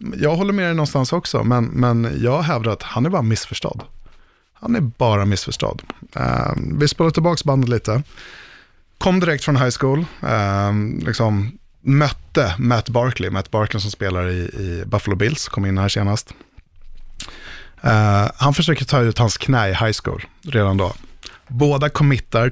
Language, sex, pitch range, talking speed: Swedish, male, 100-130 Hz, 155 wpm